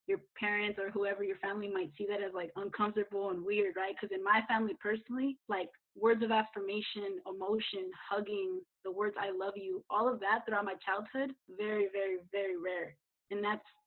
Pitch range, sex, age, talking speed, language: 195-220 Hz, female, 20-39, 185 wpm, English